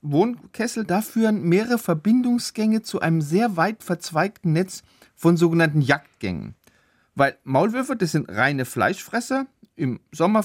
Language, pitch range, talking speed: German, 140-195 Hz, 125 wpm